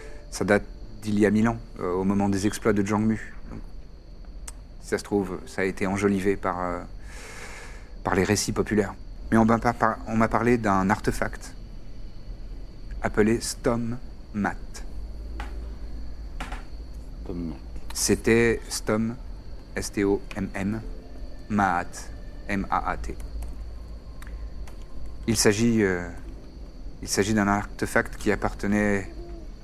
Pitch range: 90-110 Hz